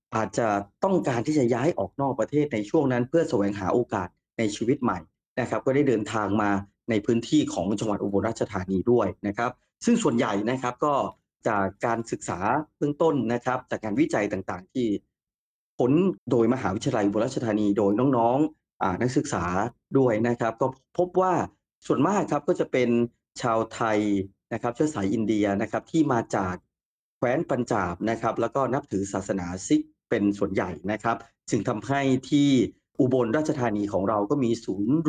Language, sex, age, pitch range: Thai, male, 30-49, 100-135 Hz